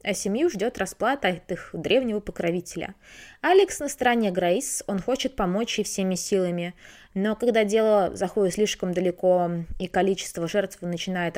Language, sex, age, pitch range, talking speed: Russian, female, 20-39, 180-245 Hz, 150 wpm